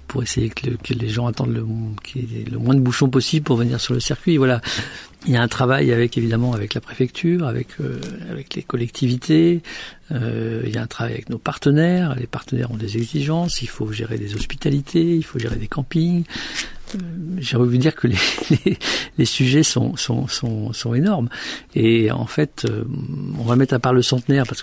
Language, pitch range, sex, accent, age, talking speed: French, 115-140 Hz, male, French, 50-69, 205 wpm